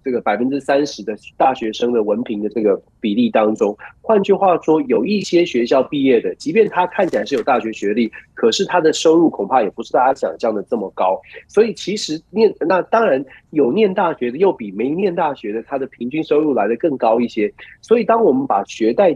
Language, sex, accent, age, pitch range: Chinese, male, native, 30-49, 130-210 Hz